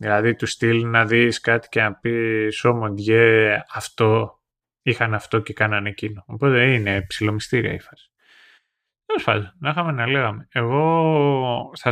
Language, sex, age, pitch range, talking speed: Greek, male, 20-39, 110-140 Hz, 150 wpm